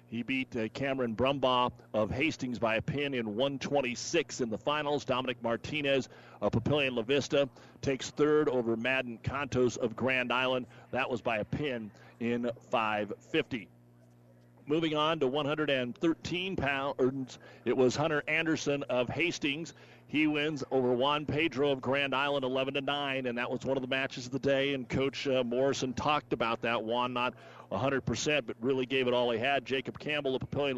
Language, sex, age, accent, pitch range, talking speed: English, male, 40-59, American, 120-150 Hz, 170 wpm